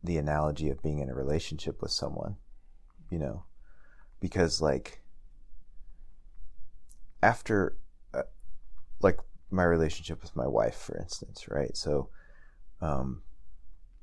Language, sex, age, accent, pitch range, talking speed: English, male, 30-49, American, 75-85 Hz, 110 wpm